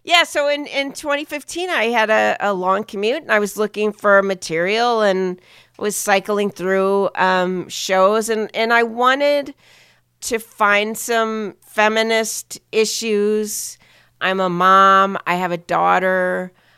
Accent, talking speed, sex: American, 140 wpm, female